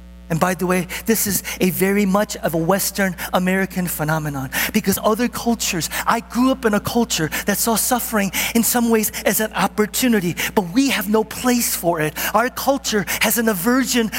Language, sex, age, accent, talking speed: English, male, 40-59, American, 185 wpm